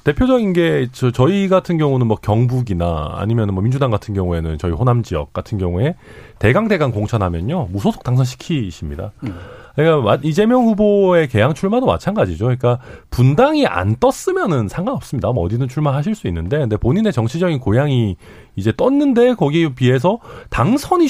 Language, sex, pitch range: Korean, male, 105-175 Hz